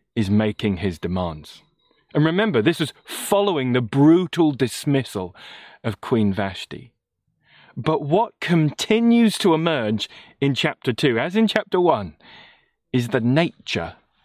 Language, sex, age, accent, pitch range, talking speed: English, male, 30-49, British, 105-155 Hz, 125 wpm